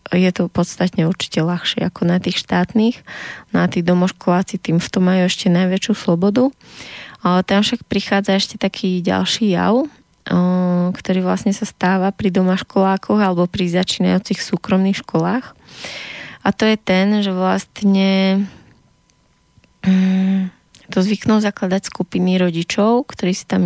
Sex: female